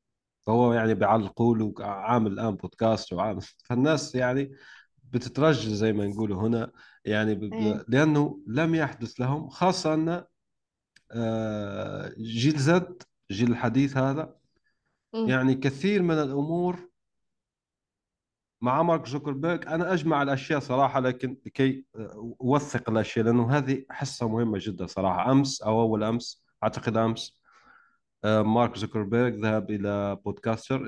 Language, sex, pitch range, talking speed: Arabic, male, 110-140 Hz, 115 wpm